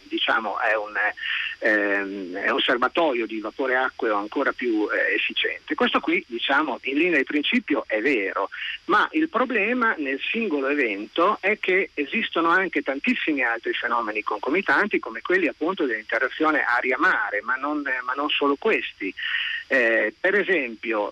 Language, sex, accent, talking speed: Italian, male, native, 150 wpm